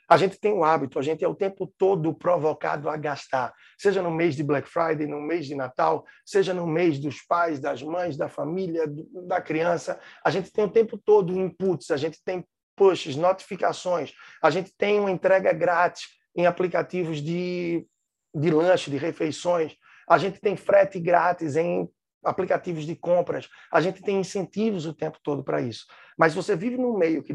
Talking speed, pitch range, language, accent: 185 wpm, 160-195 Hz, Portuguese, Brazilian